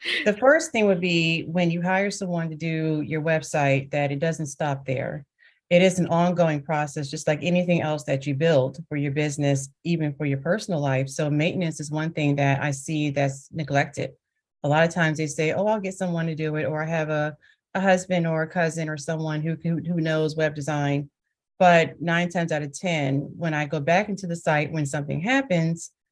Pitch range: 140-165 Hz